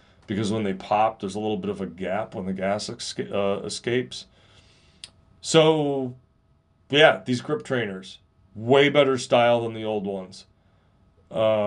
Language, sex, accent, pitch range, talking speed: English, male, American, 95-115 Hz, 150 wpm